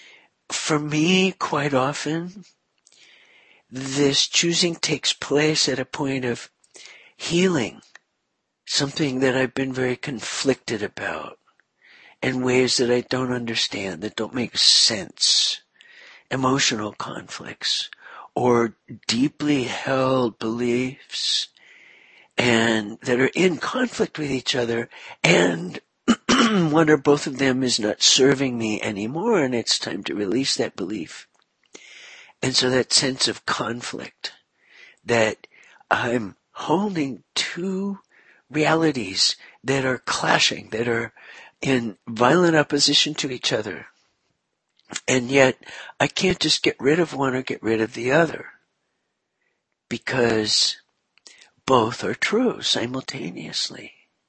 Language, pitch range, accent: English, 125-155 Hz, American